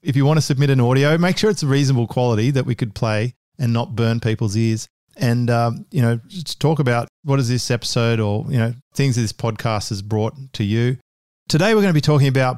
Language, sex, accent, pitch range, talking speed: English, male, Australian, 110-130 Hz, 240 wpm